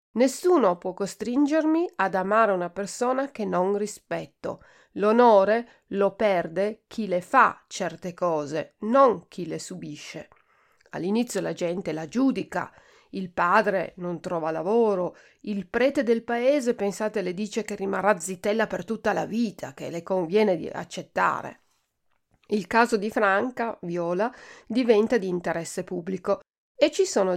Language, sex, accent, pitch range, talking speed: Italian, female, native, 185-245 Hz, 140 wpm